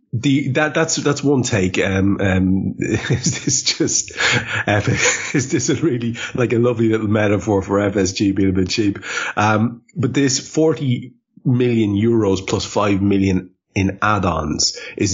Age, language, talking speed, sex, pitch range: 30-49, English, 150 wpm, male, 95-125 Hz